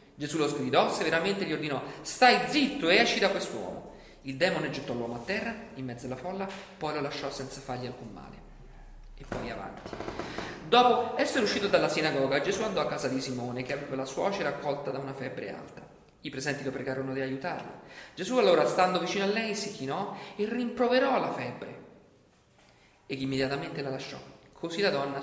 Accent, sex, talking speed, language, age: native, male, 185 wpm, Italian, 40-59